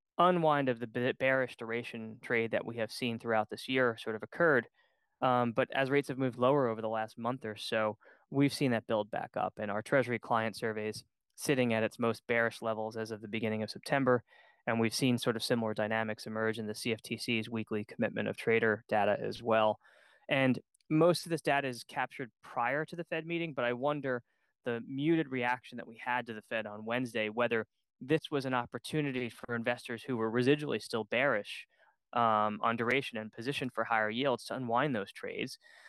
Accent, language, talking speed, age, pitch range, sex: American, English, 200 wpm, 20-39, 110-125 Hz, male